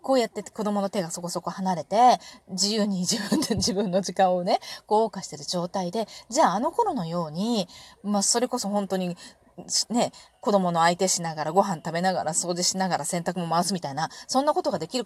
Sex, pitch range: female, 170-240 Hz